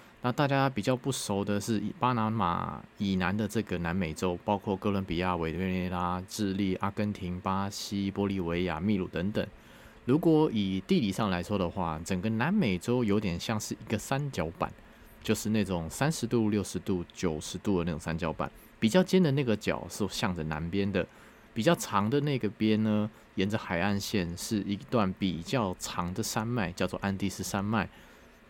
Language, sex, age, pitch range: Chinese, male, 20-39, 95-110 Hz